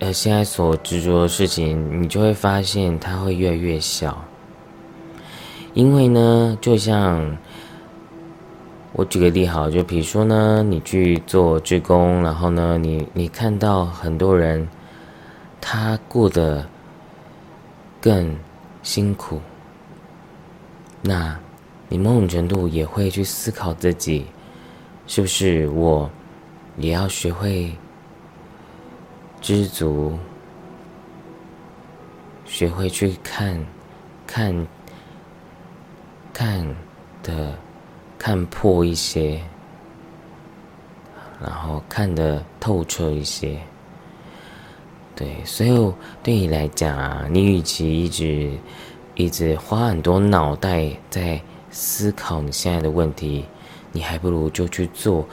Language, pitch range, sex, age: Chinese, 80-105 Hz, male, 20-39